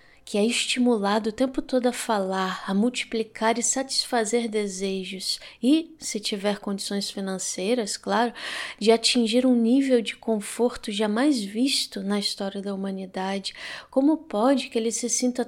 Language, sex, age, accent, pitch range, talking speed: Portuguese, female, 20-39, Brazilian, 195-235 Hz, 145 wpm